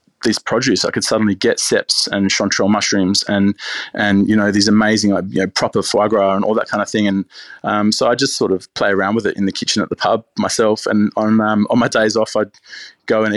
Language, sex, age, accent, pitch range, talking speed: English, male, 20-39, Australian, 100-110 Hz, 245 wpm